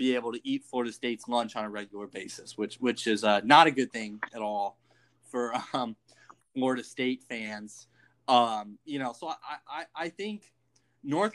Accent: American